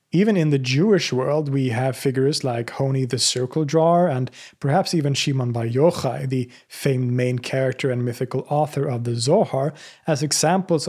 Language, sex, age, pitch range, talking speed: English, male, 30-49, 130-155 Hz, 165 wpm